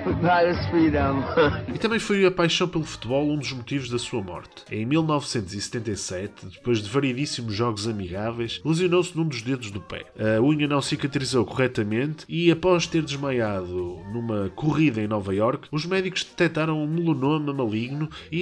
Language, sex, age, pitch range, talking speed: Portuguese, male, 20-39, 110-155 Hz, 155 wpm